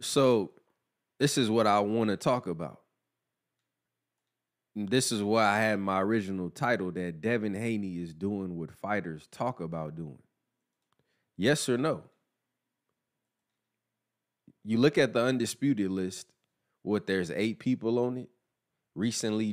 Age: 20-39